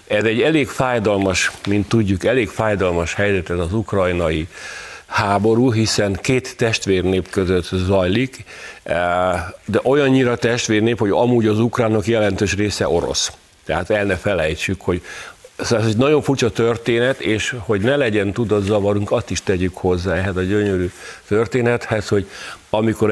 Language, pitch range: Hungarian, 95-120 Hz